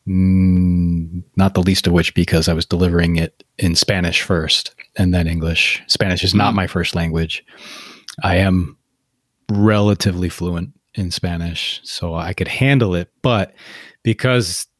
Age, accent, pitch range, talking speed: 30-49, American, 90-110 Hz, 140 wpm